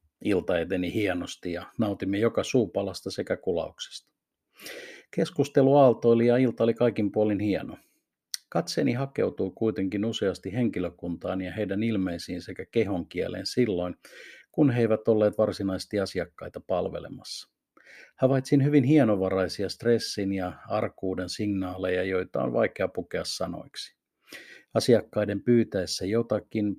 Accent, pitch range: native, 95-115 Hz